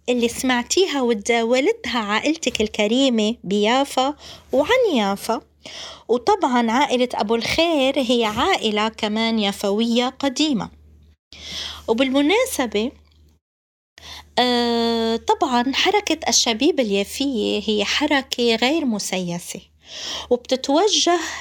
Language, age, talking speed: Arabic, 20-39, 75 wpm